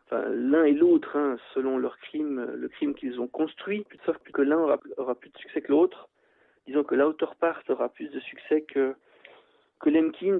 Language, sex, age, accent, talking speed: French, male, 40-59, French, 210 wpm